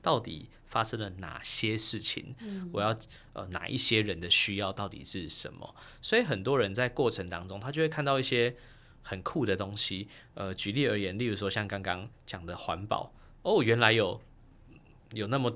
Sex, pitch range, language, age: male, 105-140 Hz, Chinese, 20-39